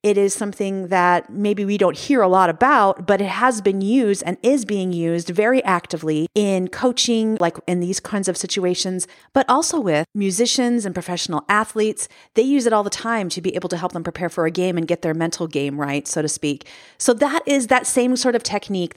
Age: 40-59